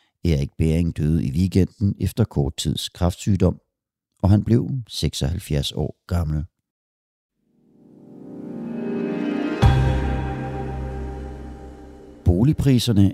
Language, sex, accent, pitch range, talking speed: Danish, male, native, 80-120 Hz, 75 wpm